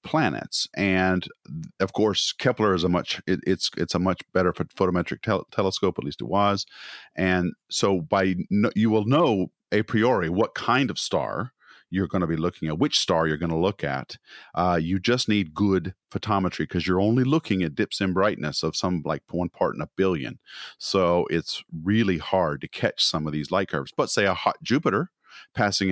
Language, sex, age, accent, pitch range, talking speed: English, male, 40-59, American, 80-100 Hz, 190 wpm